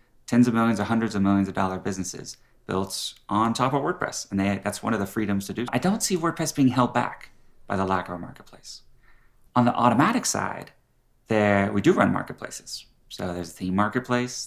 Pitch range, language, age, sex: 95-115 Hz, English, 30-49, male